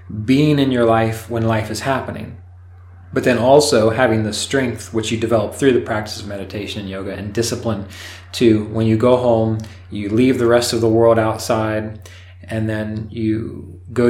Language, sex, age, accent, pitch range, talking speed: English, male, 20-39, American, 95-115 Hz, 185 wpm